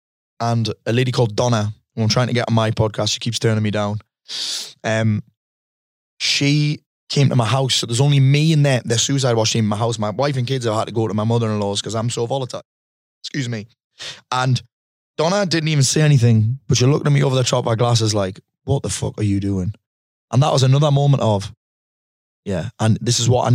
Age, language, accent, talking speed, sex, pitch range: 20-39, English, British, 225 wpm, male, 110-135 Hz